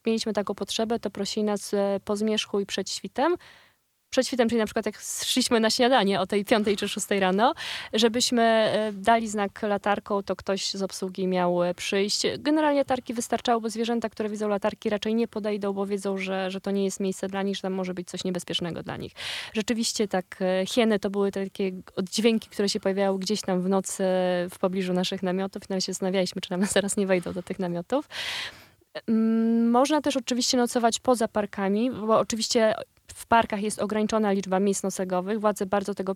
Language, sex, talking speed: Polish, female, 185 wpm